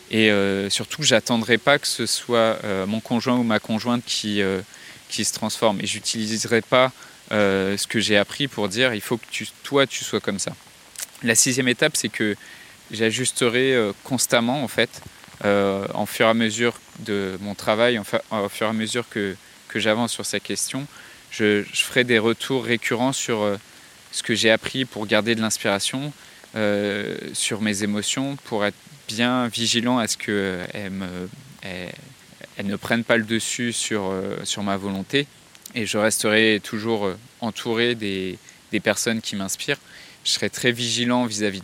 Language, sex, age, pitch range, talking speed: French, male, 20-39, 100-120 Hz, 175 wpm